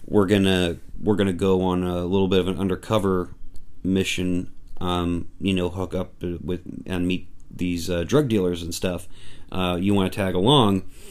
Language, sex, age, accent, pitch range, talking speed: English, male, 30-49, American, 95-115 Hz, 175 wpm